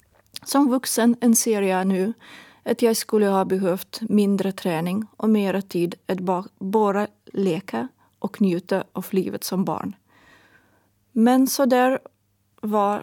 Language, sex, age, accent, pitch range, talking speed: Swedish, female, 30-49, native, 185-225 Hz, 130 wpm